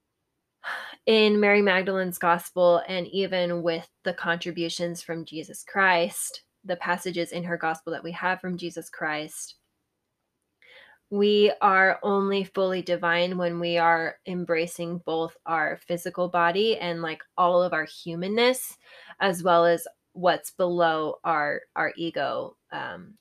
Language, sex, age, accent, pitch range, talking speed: English, female, 20-39, American, 170-195 Hz, 130 wpm